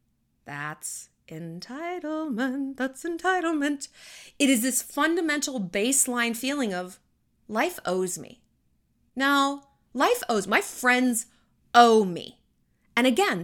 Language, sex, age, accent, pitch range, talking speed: English, female, 30-49, American, 195-295 Hz, 105 wpm